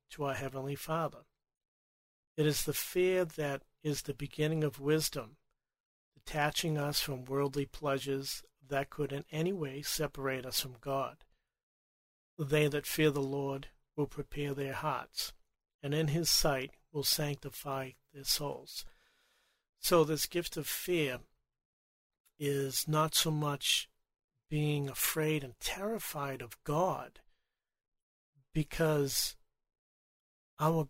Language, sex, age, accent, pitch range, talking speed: English, male, 50-69, American, 135-155 Hz, 120 wpm